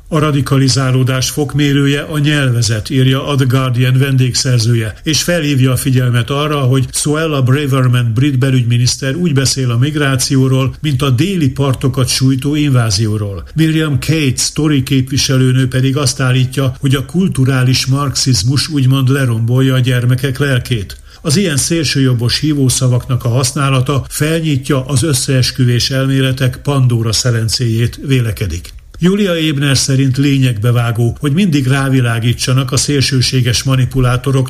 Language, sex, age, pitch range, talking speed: Hungarian, male, 60-79, 125-145 Hz, 120 wpm